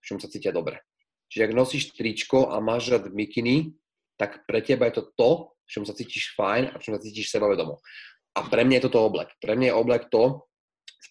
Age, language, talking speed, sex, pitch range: 20-39, Slovak, 225 wpm, male, 105-125 Hz